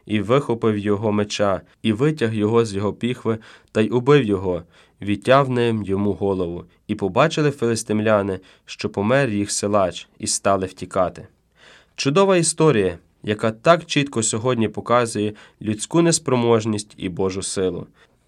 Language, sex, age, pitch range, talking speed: Ukrainian, male, 20-39, 105-130 Hz, 130 wpm